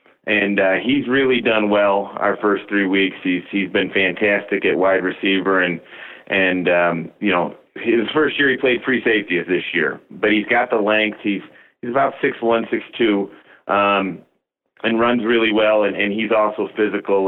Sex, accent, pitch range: male, American, 95-110 Hz